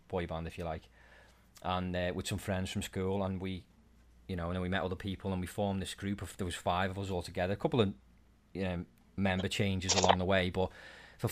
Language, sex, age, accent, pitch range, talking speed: English, male, 30-49, British, 90-100 Hz, 245 wpm